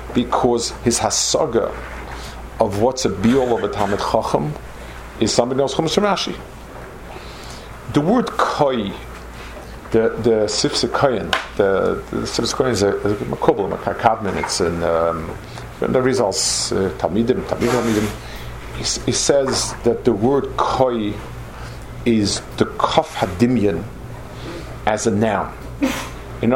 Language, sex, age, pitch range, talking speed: English, male, 50-69, 100-130 Hz, 115 wpm